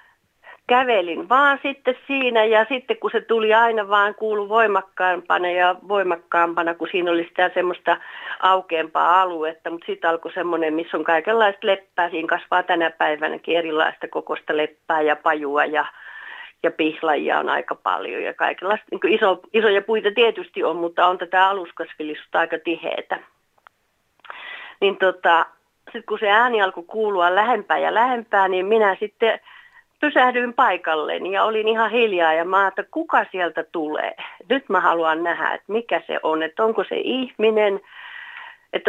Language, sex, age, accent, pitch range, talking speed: Finnish, female, 40-59, native, 165-220 Hz, 150 wpm